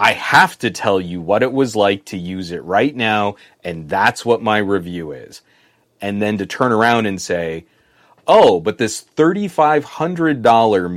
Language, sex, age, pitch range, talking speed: English, male, 30-49, 95-125 Hz, 170 wpm